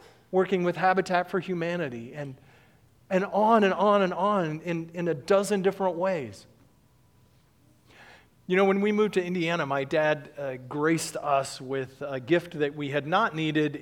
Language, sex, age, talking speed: English, male, 40-59, 165 wpm